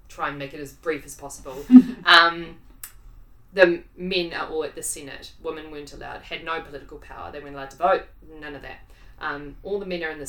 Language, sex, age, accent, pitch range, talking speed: English, female, 20-39, Australian, 140-170 Hz, 220 wpm